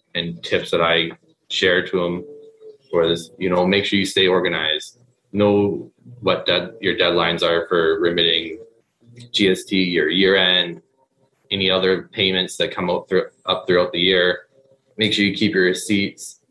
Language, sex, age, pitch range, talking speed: English, male, 20-39, 90-105 Hz, 160 wpm